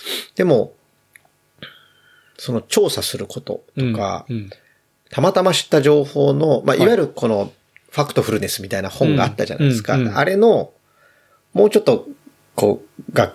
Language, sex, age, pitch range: Japanese, male, 30-49, 110-170 Hz